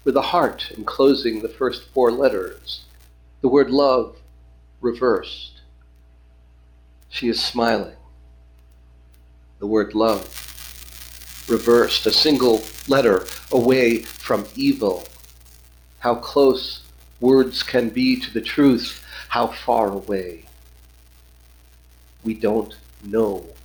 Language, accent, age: English, American, 50-69